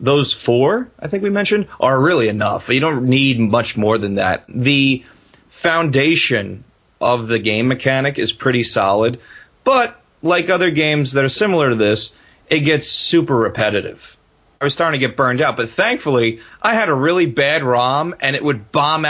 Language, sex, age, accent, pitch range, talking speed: English, male, 30-49, American, 120-160 Hz, 180 wpm